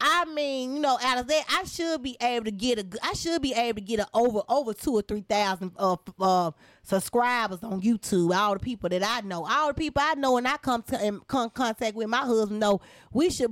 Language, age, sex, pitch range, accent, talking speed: English, 20-39, female, 200-275 Hz, American, 250 wpm